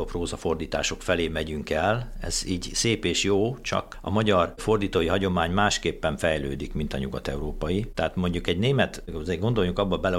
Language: Hungarian